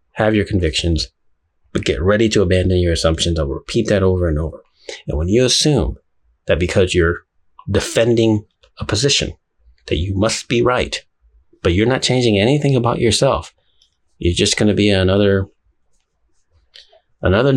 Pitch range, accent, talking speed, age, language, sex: 80-110 Hz, American, 150 wpm, 30-49, English, male